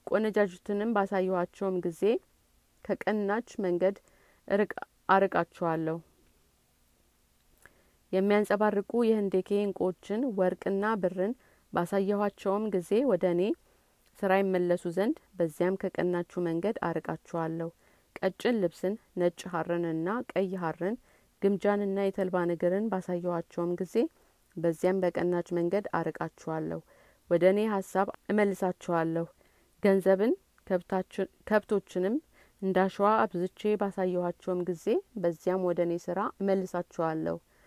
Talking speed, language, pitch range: 80 wpm, Amharic, 175-205 Hz